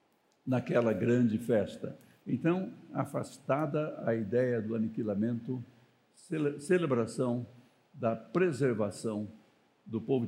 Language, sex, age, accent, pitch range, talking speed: Portuguese, male, 60-79, Brazilian, 130-185 Hz, 80 wpm